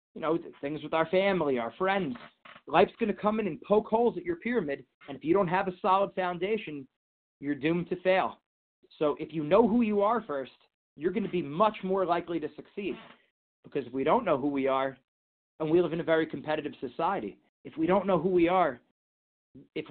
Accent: American